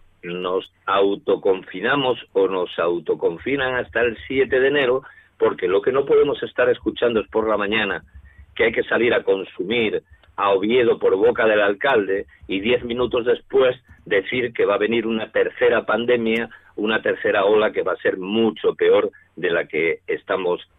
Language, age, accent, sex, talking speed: Spanish, 50-69, Spanish, male, 165 wpm